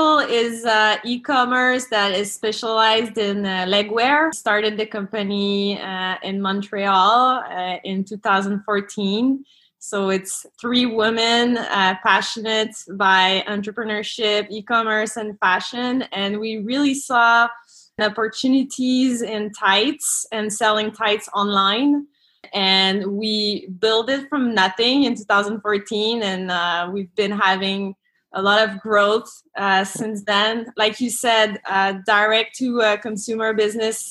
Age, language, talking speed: 20-39, English, 120 wpm